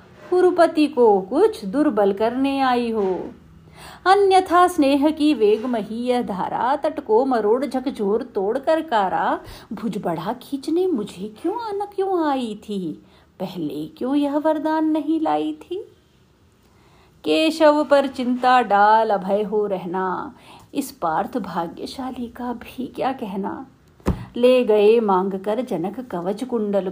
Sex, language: female, Hindi